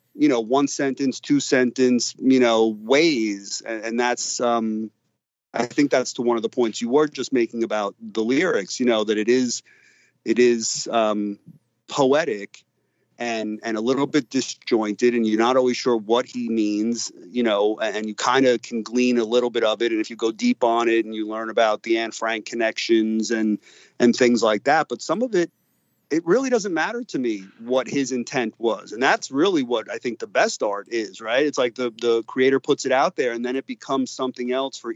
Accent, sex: American, male